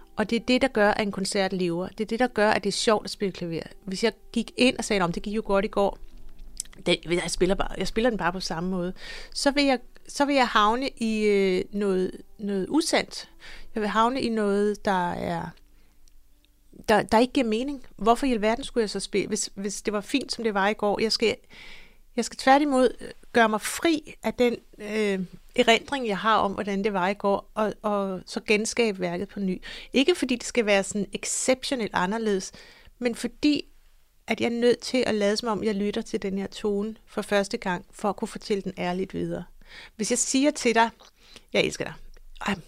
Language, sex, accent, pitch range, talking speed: Danish, female, native, 195-235 Hz, 220 wpm